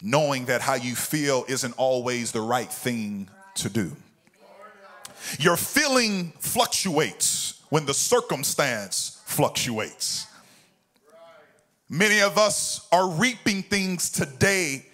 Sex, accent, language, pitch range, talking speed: male, American, English, 150-215 Hz, 105 wpm